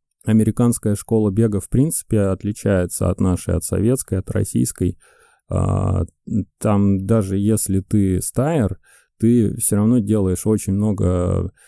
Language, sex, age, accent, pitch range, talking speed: Russian, male, 30-49, native, 95-115 Hz, 120 wpm